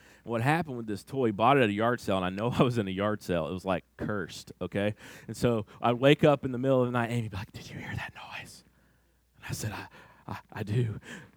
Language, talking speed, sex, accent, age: English, 275 wpm, male, American, 30-49